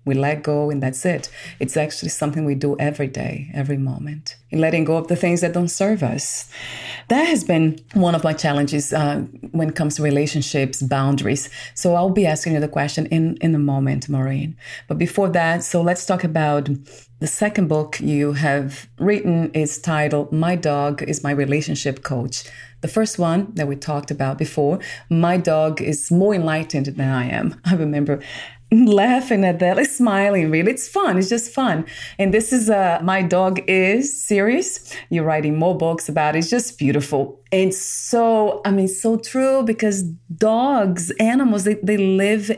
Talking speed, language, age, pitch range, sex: 180 wpm, English, 30-49, 145-200 Hz, female